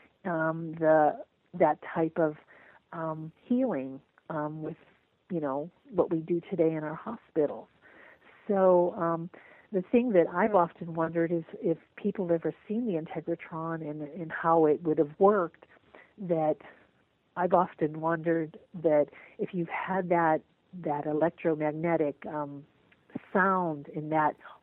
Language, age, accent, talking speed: English, 50-69, American, 135 wpm